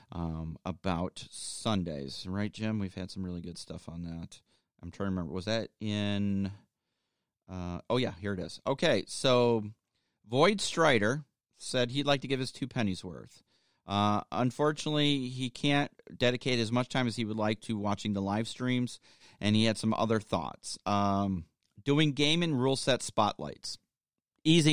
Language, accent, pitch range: English, American, 100-135 Hz